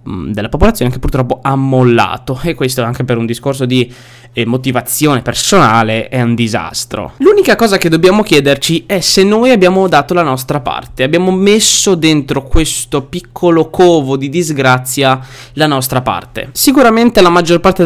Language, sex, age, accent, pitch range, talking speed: Italian, male, 20-39, native, 130-175 Hz, 155 wpm